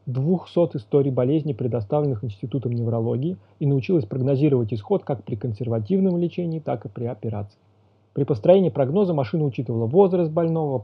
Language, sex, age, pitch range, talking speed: Russian, male, 30-49, 115-150 Hz, 140 wpm